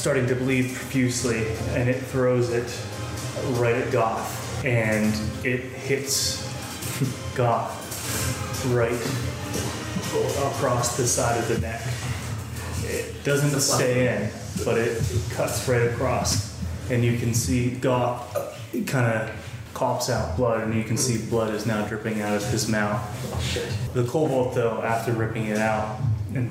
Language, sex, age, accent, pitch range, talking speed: English, male, 20-39, American, 110-125 Hz, 140 wpm